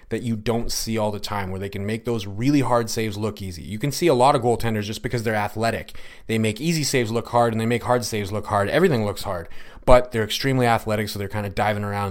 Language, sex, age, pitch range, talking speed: English, male, 30-49, 105-125 Hz, 270 wpm